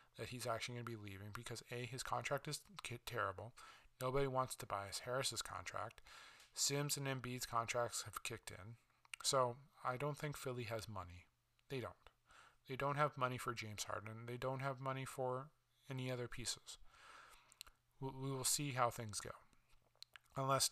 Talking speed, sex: 165 wpm, male